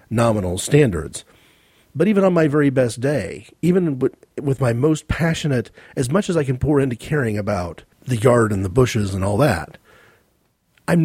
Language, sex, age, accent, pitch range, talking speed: English, male, 40-59, American, 110-155 Hz, 175 wpm